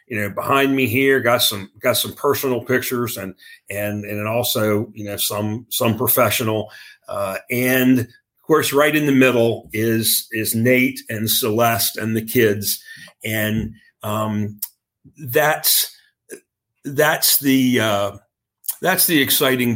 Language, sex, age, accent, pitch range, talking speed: English, male, 40-59, American, 105-130 Hz, 135 wpm